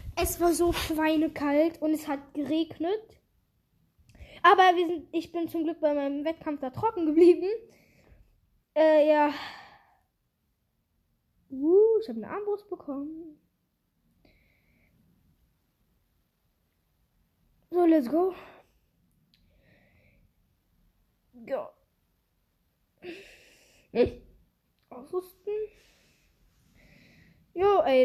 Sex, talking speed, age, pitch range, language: female, 75 wpm, 10-29, 260-340 Hz, English